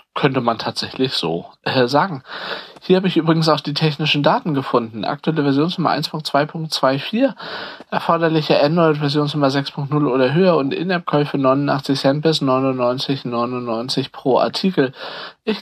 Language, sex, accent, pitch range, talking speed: Russian, male, German, 120-150 Hz, 125 wpm